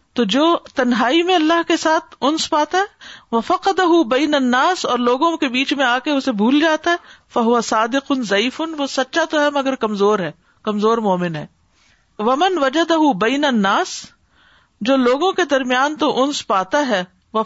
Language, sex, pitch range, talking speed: Urdu, female, 215-315 Hz, 180 wpm